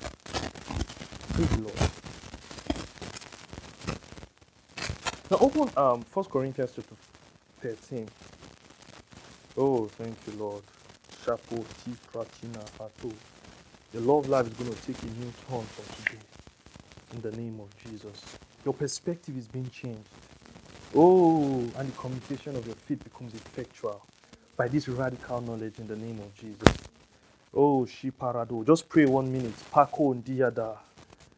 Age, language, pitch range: 30-49, English, 110-140 Hz